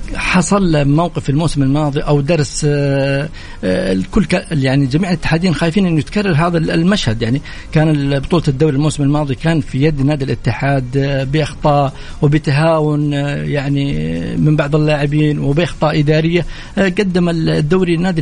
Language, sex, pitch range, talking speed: Arabic, male, 135-165 Hz, 120 wpm